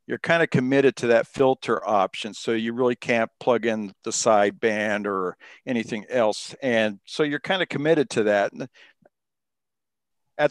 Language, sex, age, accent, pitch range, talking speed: English, male, 50-69, American, 110-160 Hz, 165 wpm